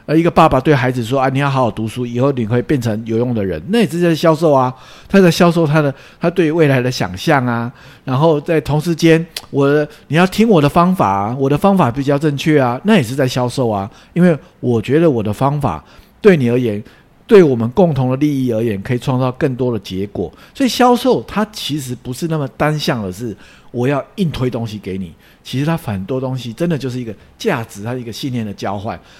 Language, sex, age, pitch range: English, male, 50-69, 115-165 Hz